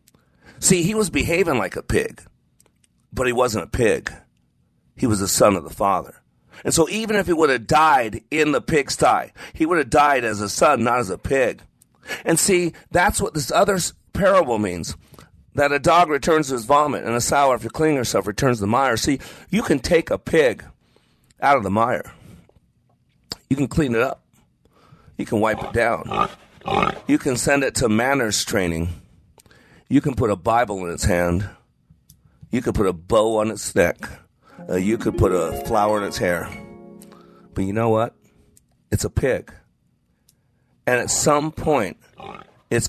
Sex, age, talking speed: male, 40-59, 180 wpm